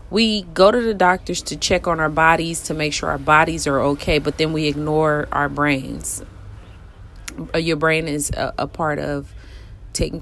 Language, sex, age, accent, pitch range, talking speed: English, female, 30-49, American, 140-170 Hz, 180 wpm